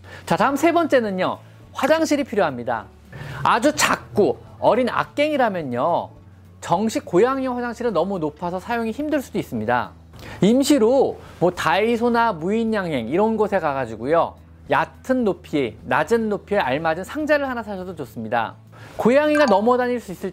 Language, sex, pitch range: Korean, male, 155-255 Hz